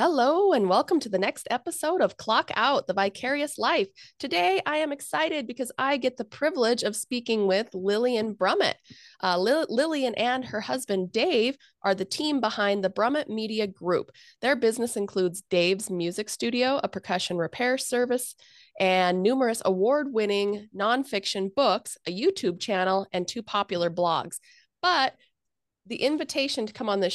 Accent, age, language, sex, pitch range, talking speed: American, 30-49, English, female, 180-245 Hz, 155 wpm